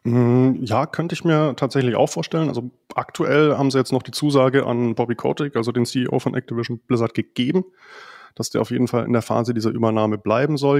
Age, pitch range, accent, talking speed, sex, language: 20-39, 120-145 Hz, German, 205 wpm, male, German